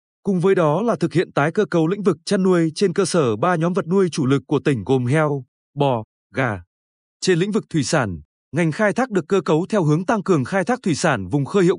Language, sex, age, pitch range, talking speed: Vietnamese, male, 20-39, 145-195 Hz, 255 wpm